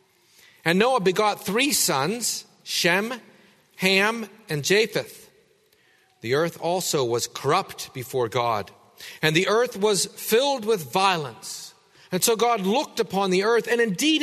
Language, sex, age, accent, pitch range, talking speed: English, male, 40-59, American, 160-210 Hz, 135 wpm